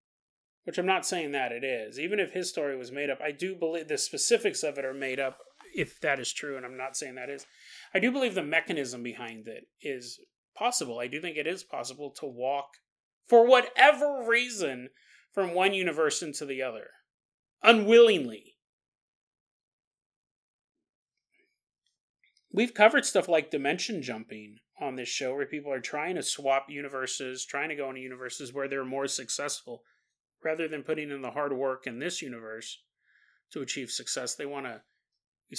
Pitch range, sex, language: 135-215 Hz, male, English